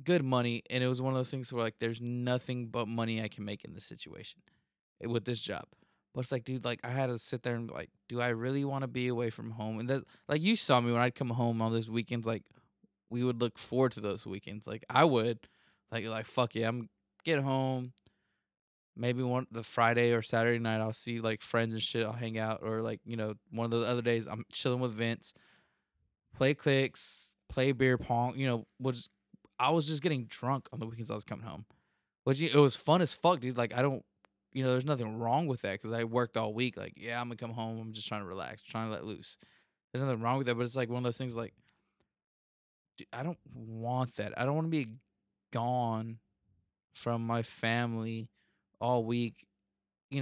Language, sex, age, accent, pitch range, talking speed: English, male, 20-39, American, 110-125 Hz, 230 wpm